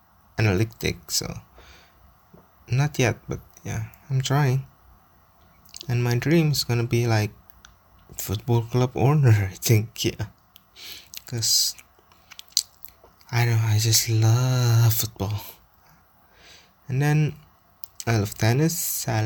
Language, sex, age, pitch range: Japanese, male, 20-39, 95-135 Hz